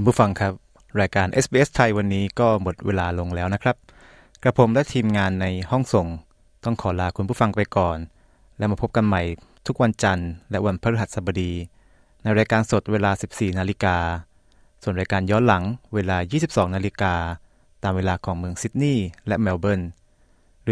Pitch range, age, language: 90-115 Hz, 20-39, Thai